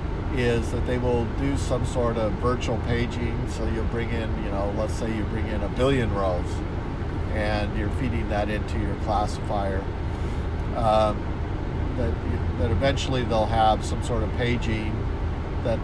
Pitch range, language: 85-115 Hz, English